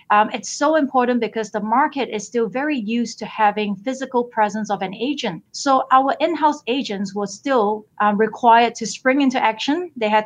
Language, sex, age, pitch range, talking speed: English, female, 30-49, 205-250 Hz, 185 wpm